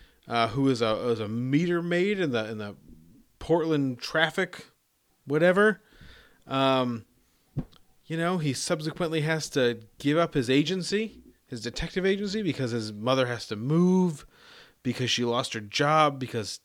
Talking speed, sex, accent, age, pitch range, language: 150 wpm, male, American, 30-49, 130-170 Hz, English